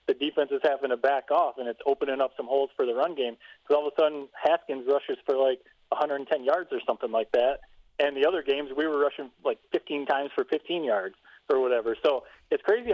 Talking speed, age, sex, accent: 230 wpm, 30-49, male, American